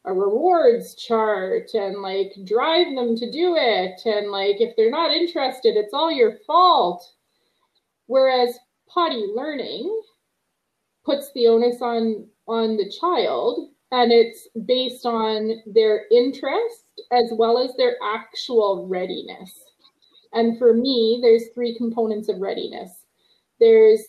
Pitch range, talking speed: 210-325 Hz, 125 wpm